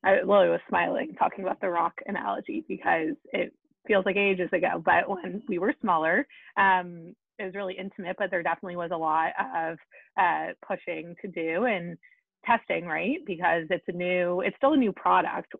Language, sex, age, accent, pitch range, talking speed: English, female, 20-39, American, 170-205 Hz, 180 wpm